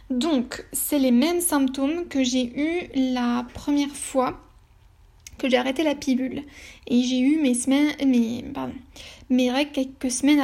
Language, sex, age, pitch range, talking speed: French, female, 10-29, 255-290 Hz, 155 wpm